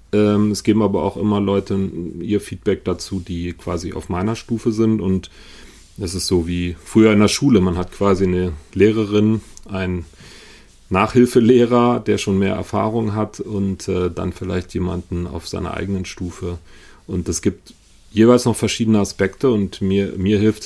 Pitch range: 90-105 Hz